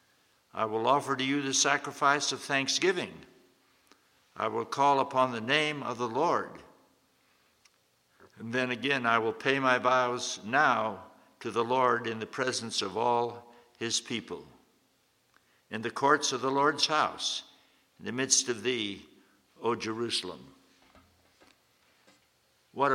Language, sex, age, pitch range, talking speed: English, male, 60-79, 115-135 Hz, 135 wpm